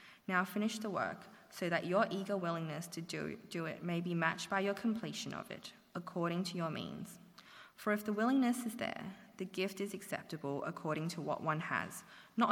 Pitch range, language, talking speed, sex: 170-210 Hz, English, 195 wpm, female